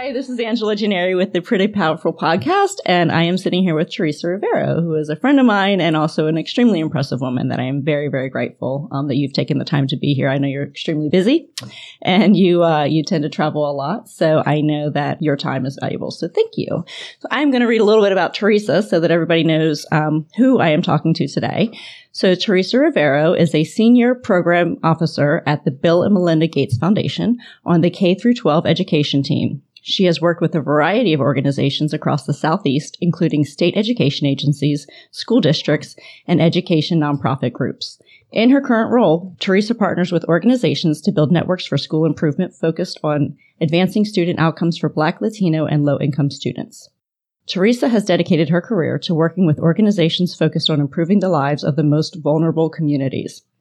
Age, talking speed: 30-49, 195 wpm